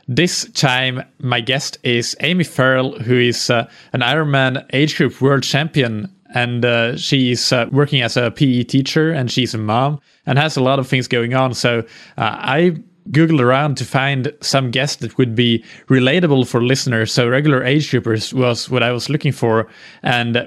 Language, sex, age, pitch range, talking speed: English, male, 20-39, 120-140 Hz, 185 wpm